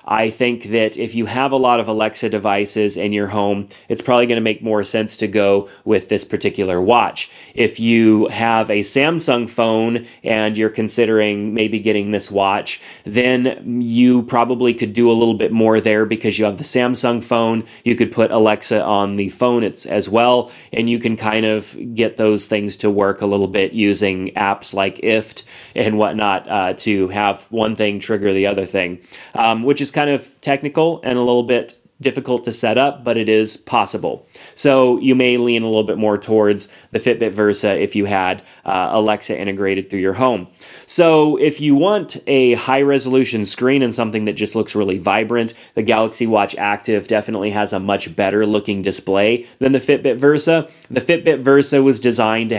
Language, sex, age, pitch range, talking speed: English, male, 30-49, 105-125 Hz, 190 wpm